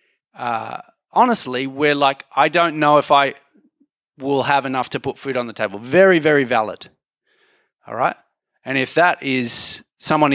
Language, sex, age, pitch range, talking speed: English, male, 30-49, 140-195 Hz, 160 wpm